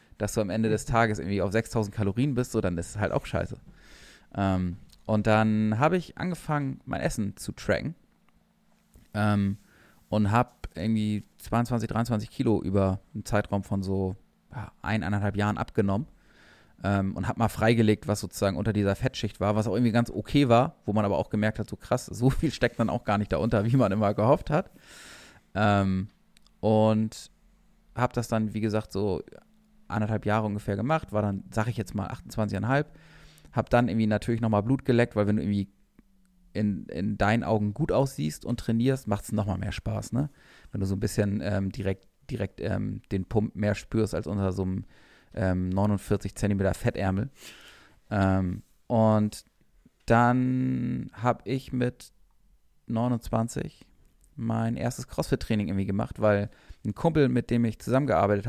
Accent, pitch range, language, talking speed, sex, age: German, 100-120 Hz, German, 170 wpm, male, 20-39